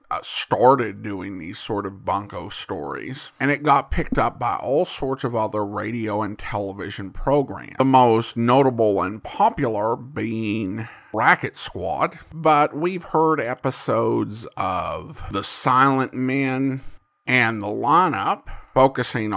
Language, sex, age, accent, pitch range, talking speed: English, male, 50-69, American, 120-160 Hz, 130 wpm